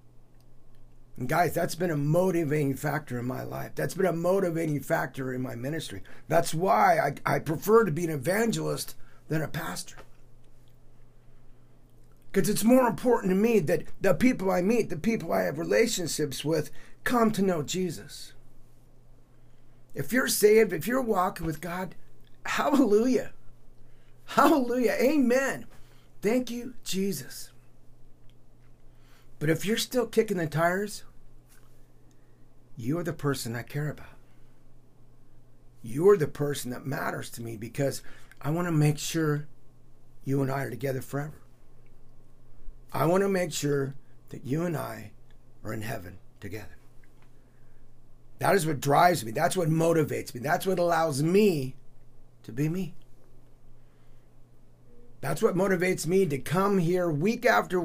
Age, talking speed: 50-69, 140 wpm